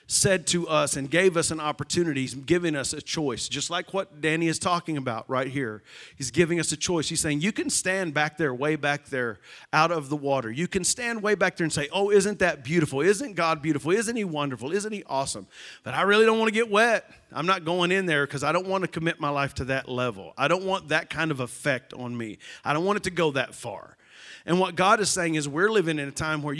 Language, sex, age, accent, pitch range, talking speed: English, male, 40-59, American, 140-180 Hz, 260 wpm